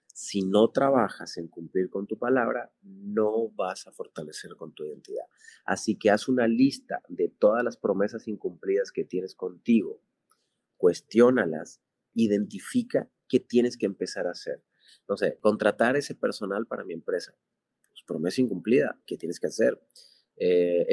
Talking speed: 145 wpm